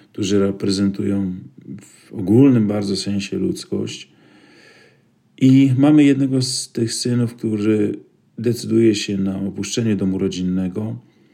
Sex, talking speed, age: male, 105 wpm, 40-59